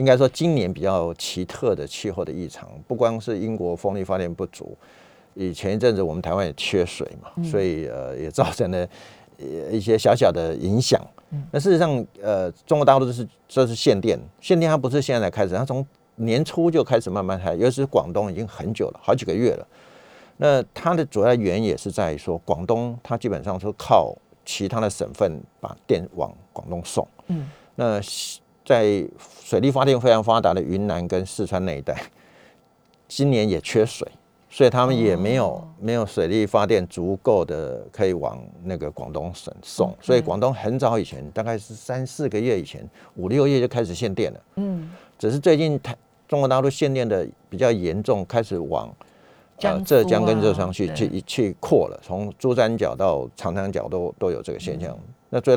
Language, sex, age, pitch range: Chinese, male, 50-69, 100-135 Hz